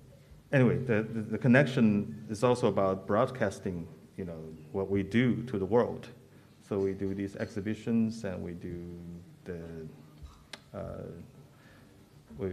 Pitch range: 90-115 Hz